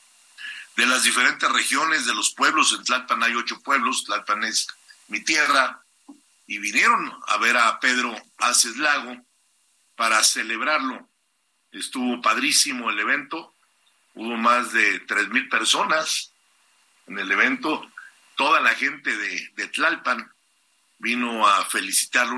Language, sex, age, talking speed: Spanish, male, 50-69, 125 wpm